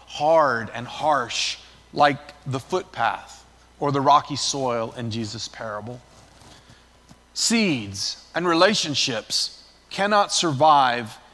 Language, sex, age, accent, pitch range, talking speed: English, male, 40-59, American, 130-185 Hz, 95 wpm